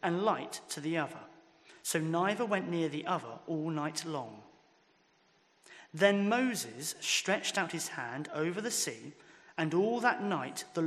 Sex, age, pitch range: male, 30-49, 155-205 Hz